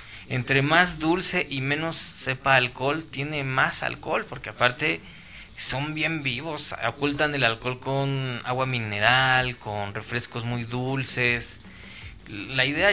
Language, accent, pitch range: Spanish, Mexican, 110-160 Hz